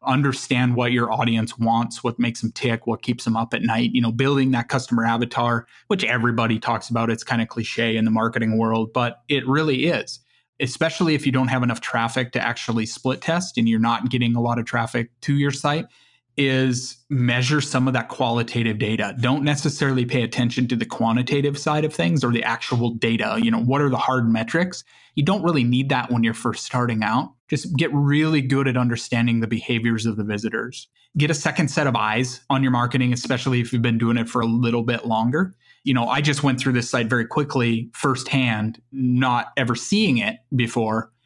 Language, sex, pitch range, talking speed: English, male, 115-140 Hz, 210 wpm